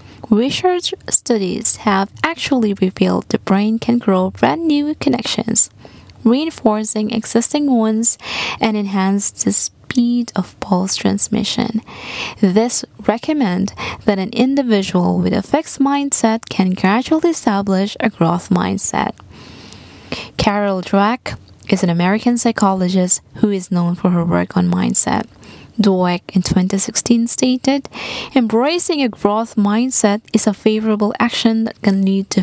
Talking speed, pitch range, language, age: 125 wpm, 190-240 Hz, English, 20-39